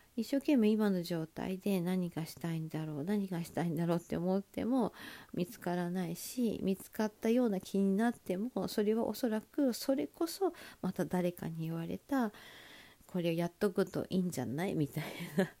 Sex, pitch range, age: female, 170-235 Hz, 50-69